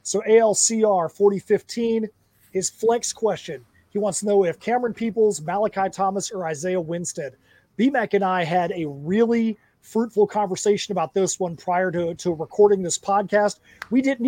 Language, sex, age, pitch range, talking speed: English, male, 30-49, 180-215 Hz, 155 wpm